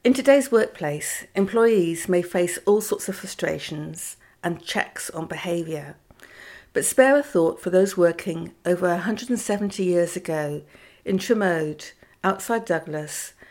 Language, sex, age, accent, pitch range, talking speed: English, female, 60-79, British, 170-200 Hz, 130 wpm